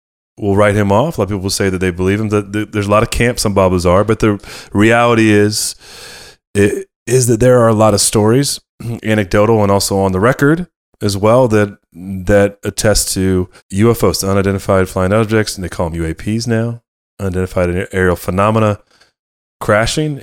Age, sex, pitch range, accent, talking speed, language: 30-49, male, 95-115 Hz, American, 185 wpm, English